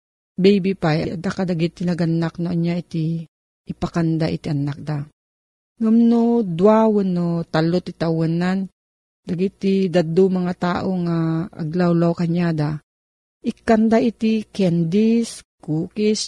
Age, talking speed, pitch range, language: 40-59, 105 wpm, 165-215 Hz, Filipino